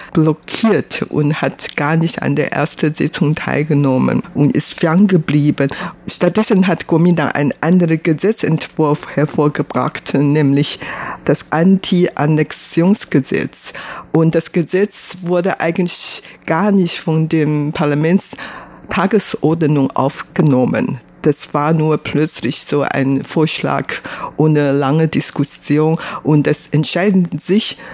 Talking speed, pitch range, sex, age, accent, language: 105 wpm, 145-175 Hz, female, 50-69, German, German